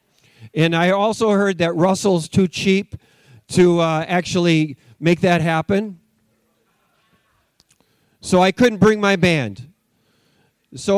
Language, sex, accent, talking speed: English, male, American, 115 wpm